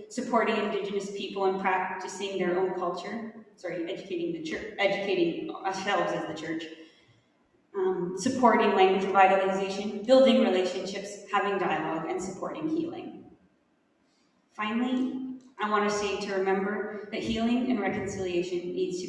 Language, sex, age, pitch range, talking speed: English, female, 20-39, 185-245 Hz, 130 wpm